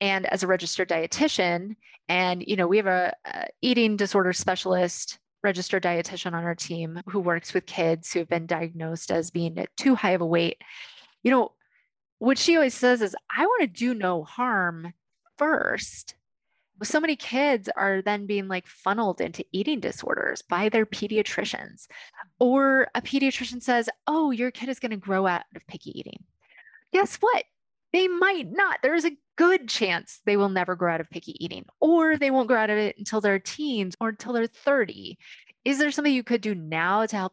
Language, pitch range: English, 180-270 Hz